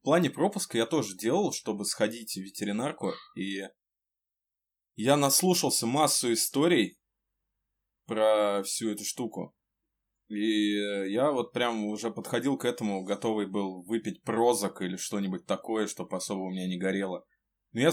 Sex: male